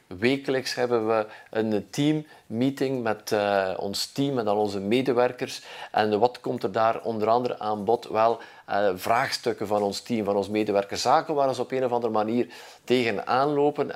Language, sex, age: Dutch, male, 50-69